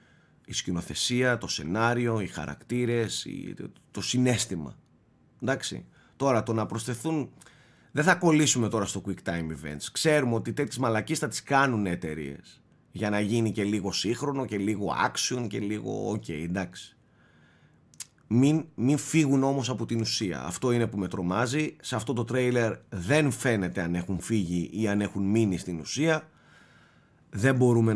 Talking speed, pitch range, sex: 150 wpm, 105-140 Hz, male